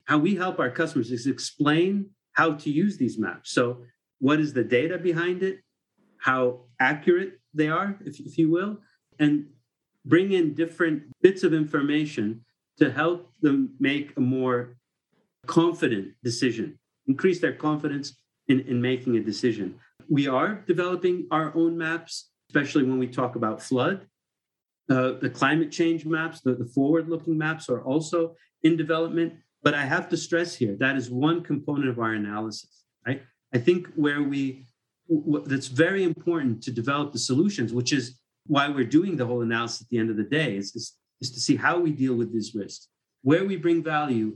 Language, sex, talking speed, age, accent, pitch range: English, male, 175 wpm, 50-69, American, 125-165 Hz